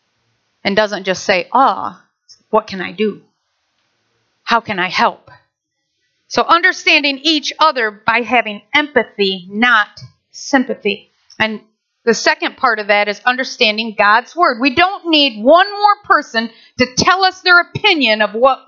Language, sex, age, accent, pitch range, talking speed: English, female, 40-59, American, 220-330 Hz, 150 wpm